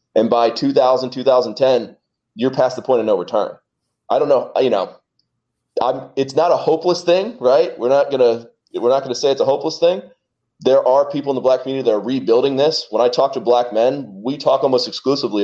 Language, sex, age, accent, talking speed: English, male, 30-49, American, 215 wpm